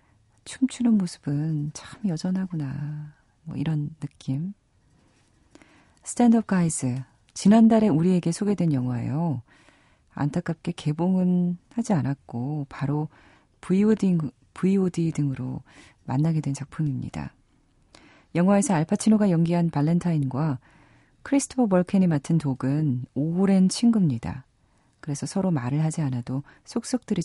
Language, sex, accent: Korean, female, native